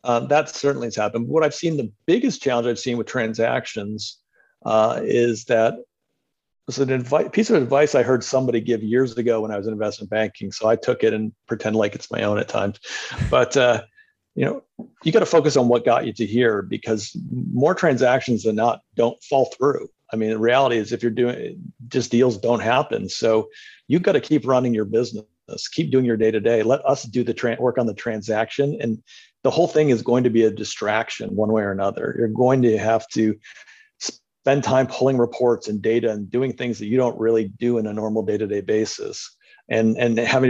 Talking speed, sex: 215 wpm, male